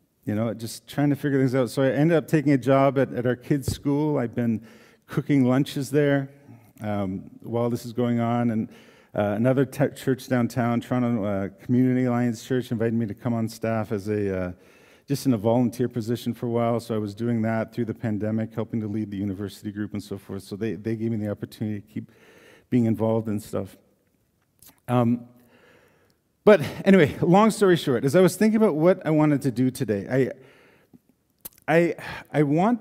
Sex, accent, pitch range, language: male, American, 110-145 Hz, English